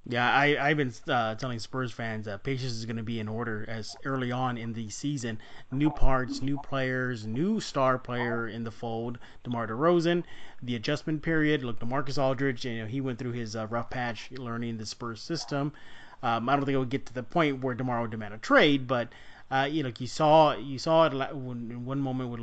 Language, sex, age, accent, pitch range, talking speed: English, male, 30-49, American, 115-135 Hz, 215 wpm